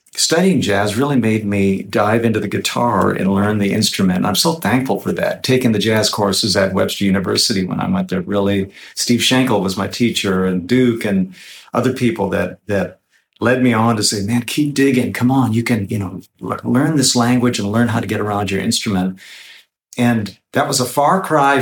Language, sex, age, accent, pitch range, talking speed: English, male, 50-69, American, 100-125 Hz, 210 wpm